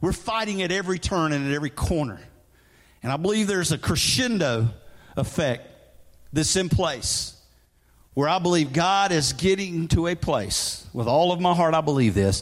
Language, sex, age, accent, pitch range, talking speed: English, male, 50-69, American, 120-175 Hz, 175 wpm